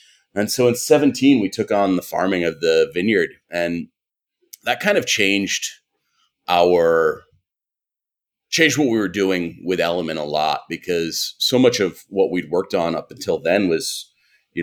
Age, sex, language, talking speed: 30-49, male, English, 165 wpm